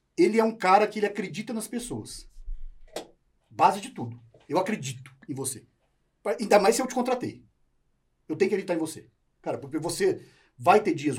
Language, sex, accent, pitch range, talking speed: Portuguese, male, Brazilian, 135-230 Hz, 180 wpm